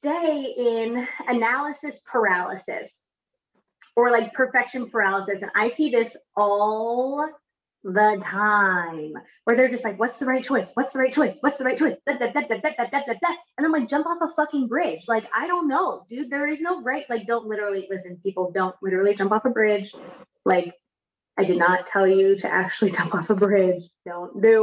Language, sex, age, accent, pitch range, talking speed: English, female, 20-39, American, 210-295 Hz, 180 wpm